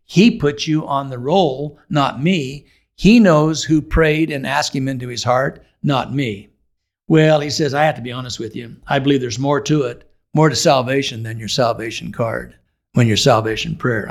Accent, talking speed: American, 200 wpm